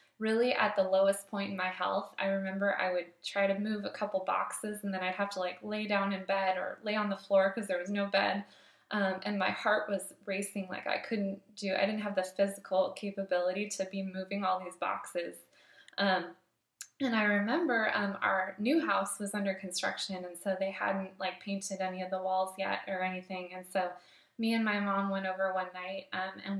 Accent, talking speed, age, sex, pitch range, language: American, 215 wpm, 20-39, female, 185-205 Hz, English